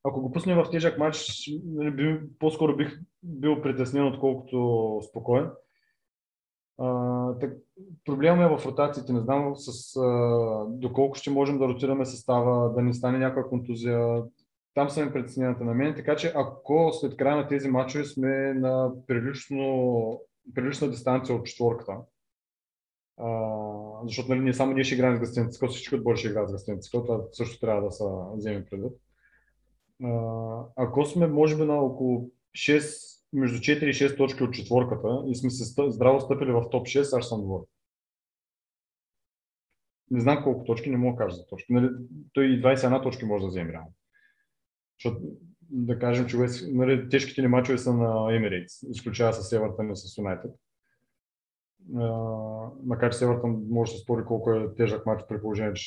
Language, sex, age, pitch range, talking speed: Bulgarian, male, 20-39, 115-135 Hz, 155 wpm